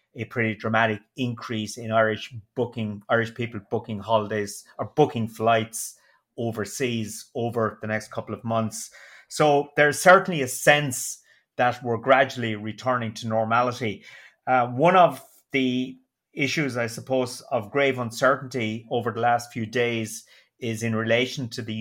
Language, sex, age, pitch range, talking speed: English, male, 30-49, 110-120 Hz, 145 wpm